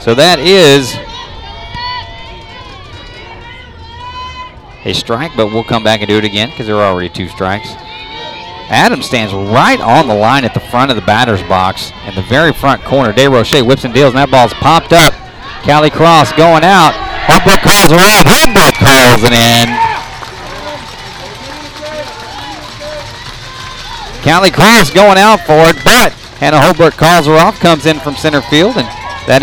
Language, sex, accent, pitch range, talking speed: English, male, American, 115-165 Hz, 160 wpm